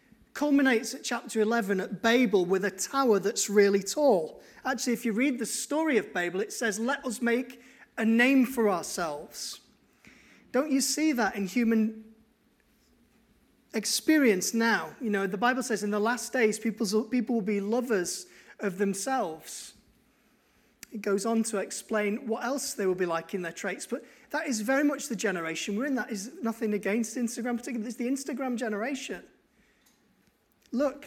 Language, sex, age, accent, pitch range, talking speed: English, male, 30-49, British, 215-265 Hz, 165 wpm